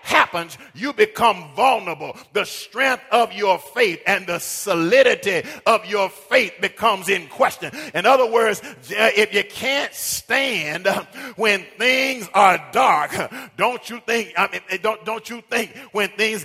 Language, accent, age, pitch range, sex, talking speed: English, American, 40-59, 200-245 Hz, male, 145 wpm